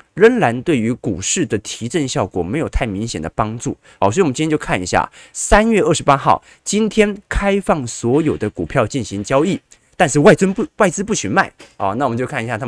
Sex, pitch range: male, 110-160 Hz